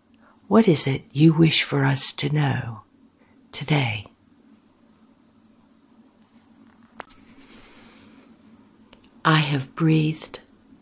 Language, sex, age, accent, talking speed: English, female, 60-79, American, 70 wpm